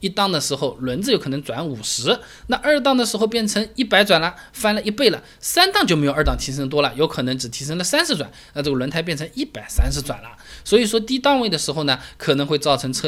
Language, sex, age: Chinese, male, 20-39